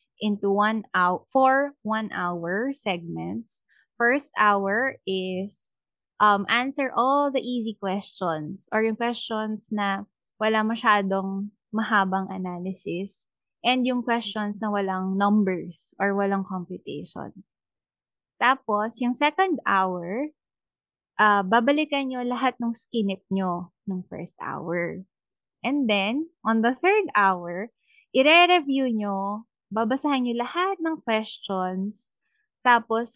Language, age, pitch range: Filipino, 20-39, 195-240 Hz